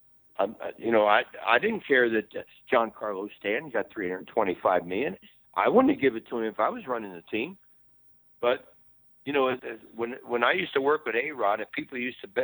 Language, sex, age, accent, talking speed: English, male, 60-79, American, 205 wpm